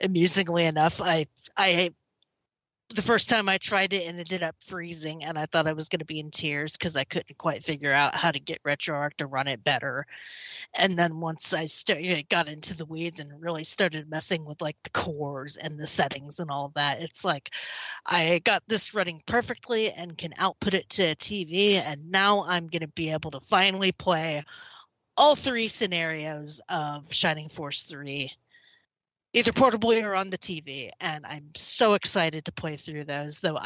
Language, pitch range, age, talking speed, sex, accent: English, 150-185 Hz, 30-49, 190 wpm, female, American